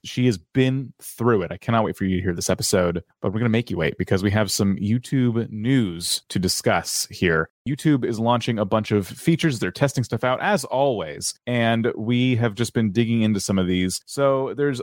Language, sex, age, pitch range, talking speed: English, male, 30-49, 110-135 Hz, 225 wpm